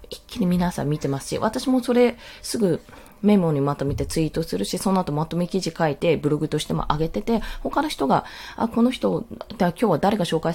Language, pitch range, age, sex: Japanese, 170-270 Hz, 20-39, female